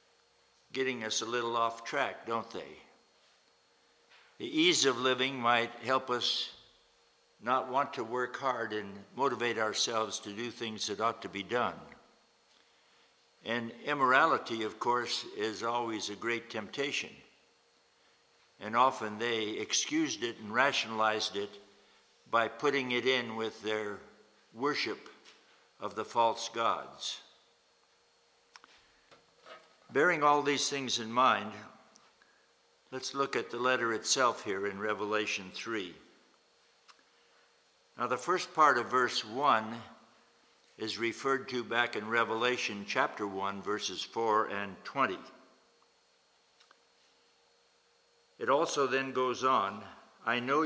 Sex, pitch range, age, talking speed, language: male, 110-130 Hz, 60-79, 120 wpm, English